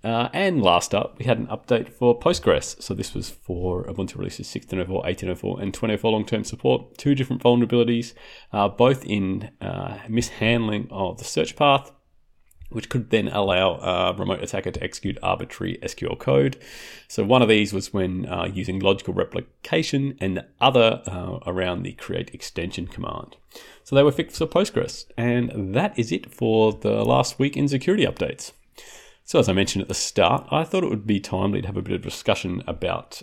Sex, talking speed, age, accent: male, 180 wpm, 30-49, Australian